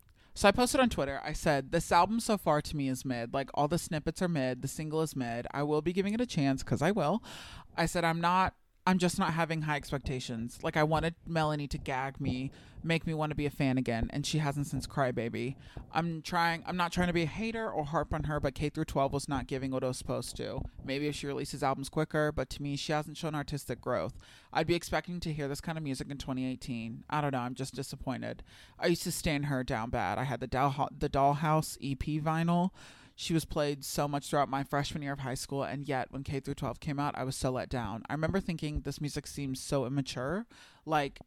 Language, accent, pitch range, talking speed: English, American, 135-160 Hz, 245 wpm